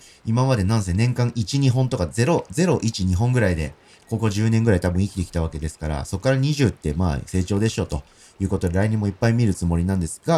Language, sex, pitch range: Japanese, male, 85-120 Hz